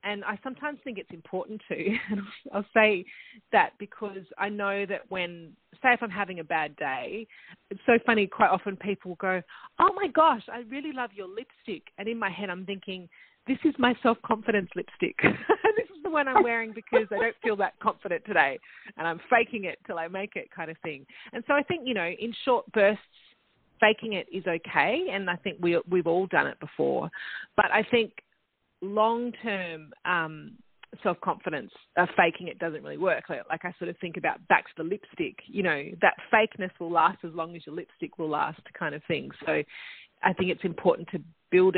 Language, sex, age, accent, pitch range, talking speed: English, female, 30-49, Australian, 175-230 Hz, 205 wpm